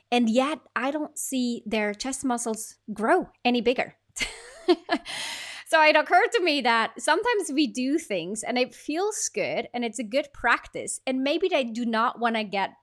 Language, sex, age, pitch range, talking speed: English, female, 30-49, 225-290 Hz, 180 wpm